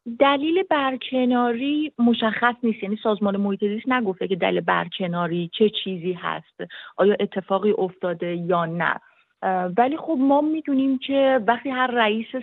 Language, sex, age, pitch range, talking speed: Persian, female, 30-49, 195-240 Hz, 130 wpm